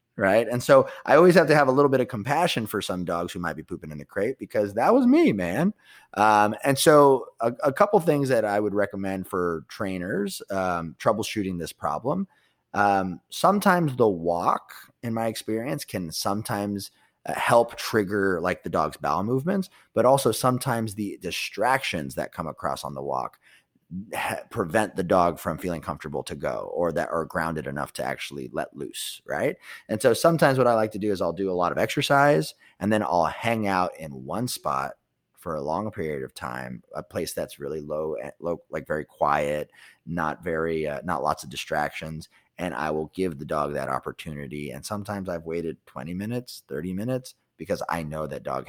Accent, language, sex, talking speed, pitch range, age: American, English, male, 195 wpm, 80-125 Hz, 30-49